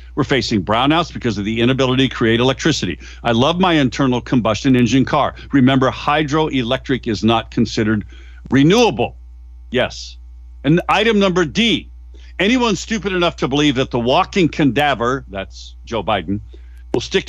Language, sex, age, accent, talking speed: English, male, 50-69, American, 145 wpm